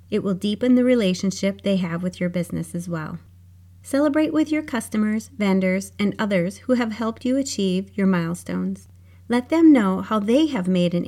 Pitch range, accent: 170-225 Hz, American